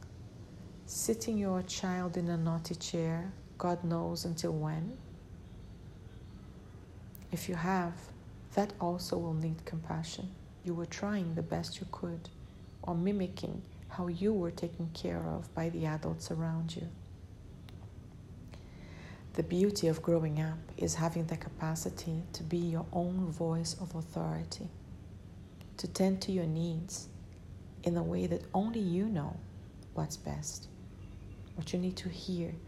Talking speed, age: 135 wpm, 50-69